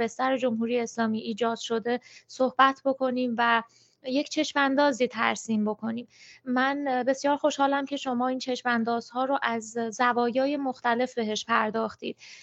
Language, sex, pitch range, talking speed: Persian, female, 235-260 Hz, 130 wpm